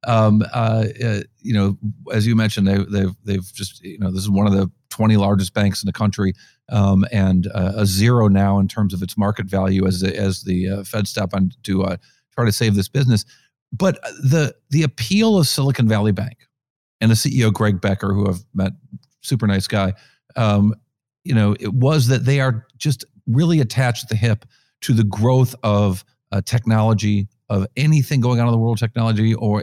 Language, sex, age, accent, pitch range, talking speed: English, male, 50-69, American, 100-130 Hz, 205 wpm